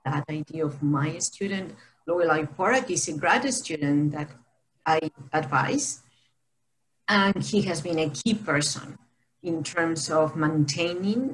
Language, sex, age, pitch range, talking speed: English, female, 40-59, 150-205 Hz, 125 wpm